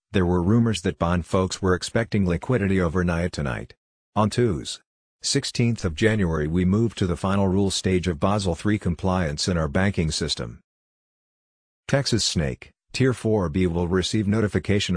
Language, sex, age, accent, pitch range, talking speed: English, male, 50-69, American, 90-105 Hz, 150 wpm